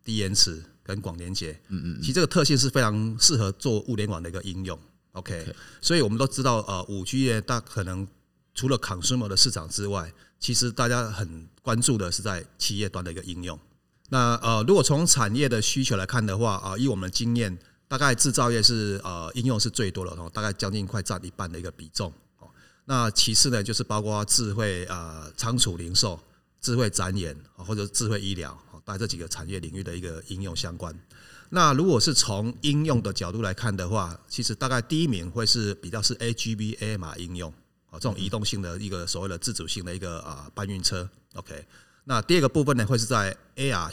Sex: male